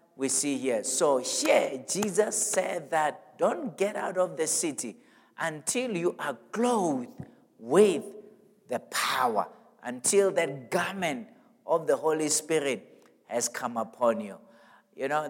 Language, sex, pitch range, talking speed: English, male, 135-175 Hz, 135 wpm